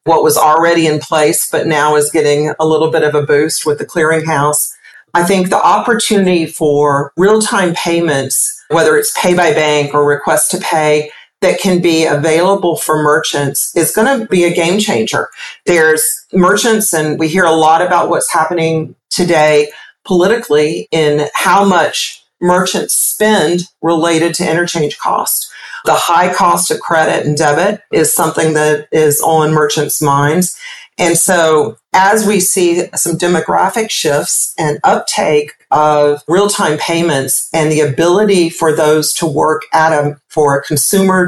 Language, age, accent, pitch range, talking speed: English, 40-59, American, 150-180 Hz, 150 wpm